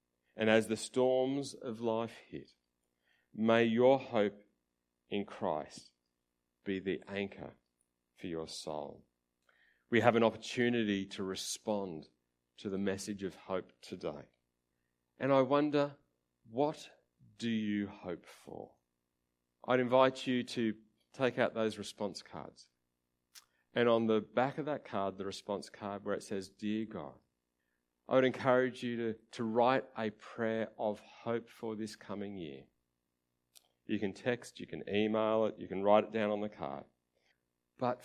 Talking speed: 145 wpm